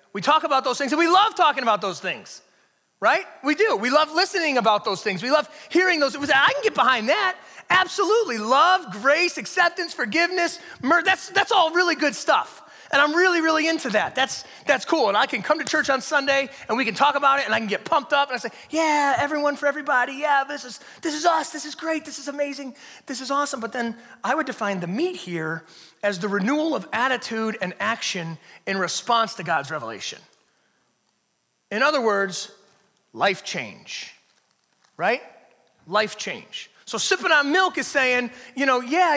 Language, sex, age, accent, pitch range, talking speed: English, male, 30-49, American, 235-315 Hz, 200 wpm